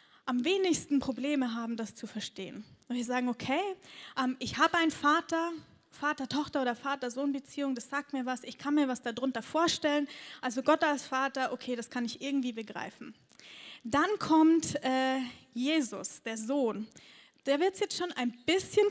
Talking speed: 155 wpm